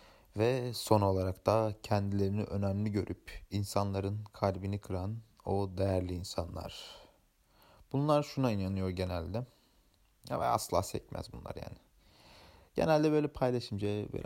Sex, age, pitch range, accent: male, 30-49, 95-110 Hz, native